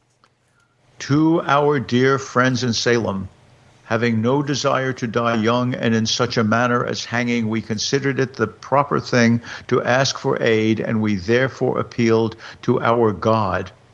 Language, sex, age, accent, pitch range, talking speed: English, male, 60-79, American, 110-130 Hz, 155 wpm